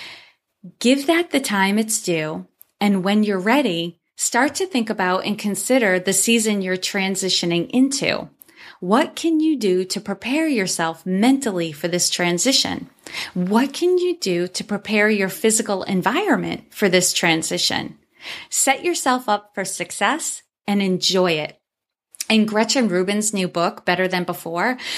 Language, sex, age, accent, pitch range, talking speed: English, female, 30-49, American, 185-255 Hz, 145 wpm